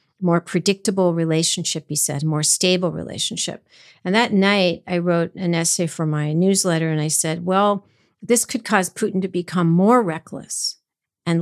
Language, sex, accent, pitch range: English, female, American, 170-210 Hz